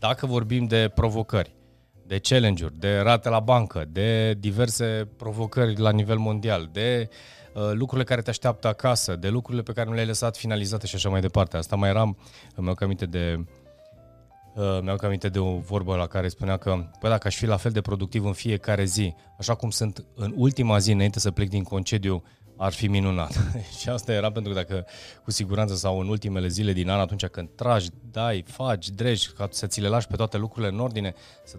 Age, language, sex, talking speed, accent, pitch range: 20-39, Romanian, male, 205 wpm, native, 95-115 Hz